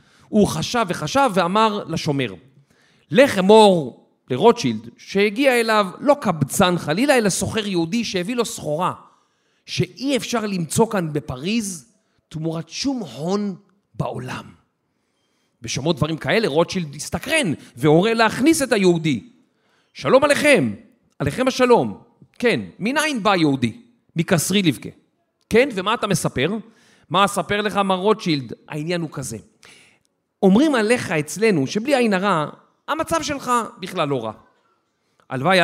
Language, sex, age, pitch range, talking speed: Hebrew, male, 40-59, 150-235 Hz, 120 wpm